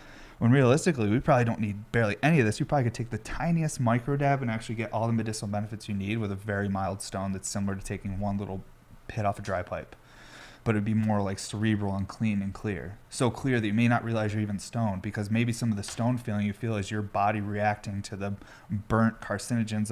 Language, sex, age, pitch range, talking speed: English, male, 30-49, 105-120 Hz, 240 wpm